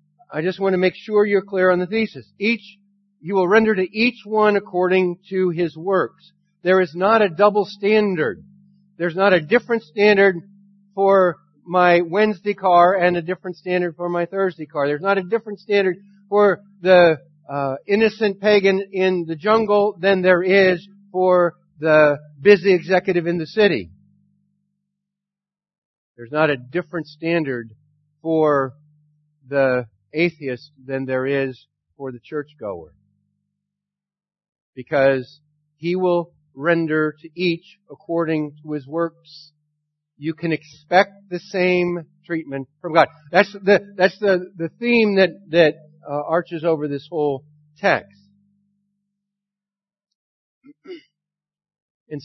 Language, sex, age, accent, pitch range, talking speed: English, male, 50-69, American, 155-200 Hz, 130 wpm